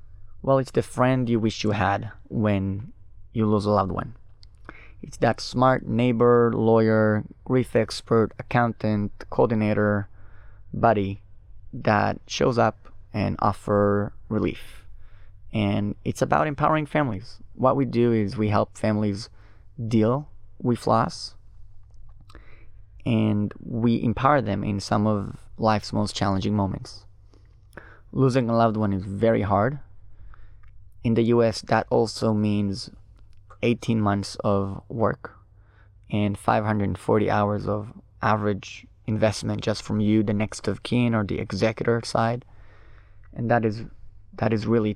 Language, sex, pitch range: Hebrew, male, 100-115 Hz